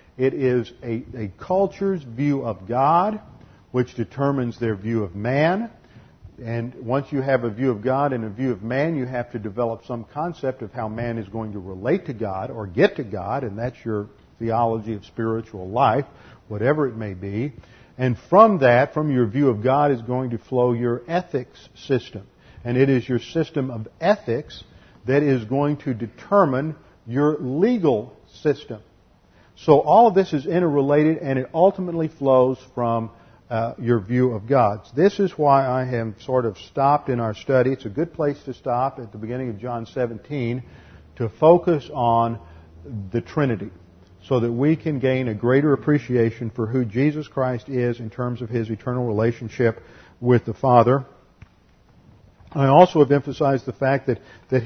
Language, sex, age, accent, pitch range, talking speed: English, male, 50-69, American, 115-140 Hz, 175 wpm